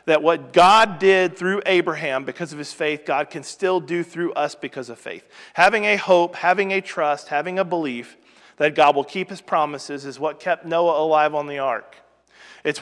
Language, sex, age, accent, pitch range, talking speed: English, male, 40-59, American, 155-200 Hz, 200 wpm